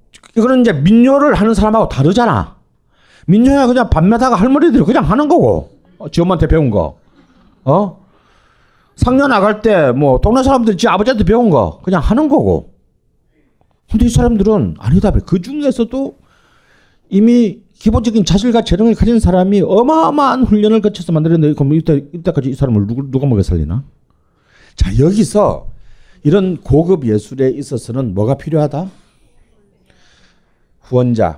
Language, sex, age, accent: Korean, male, 40-59, native